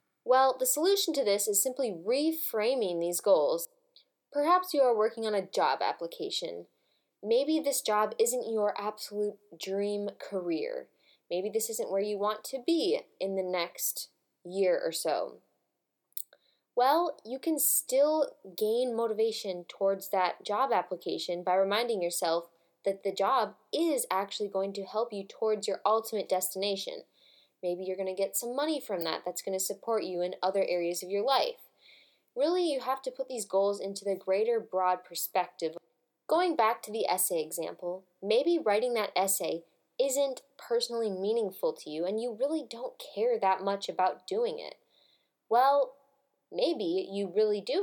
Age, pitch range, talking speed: 10-29, 190-280 Hz, 160 wpm